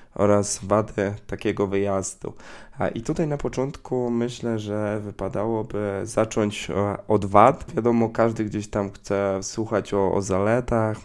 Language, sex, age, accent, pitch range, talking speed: Polish, male, 20-39, native, 100-110 Hz, 125 wpm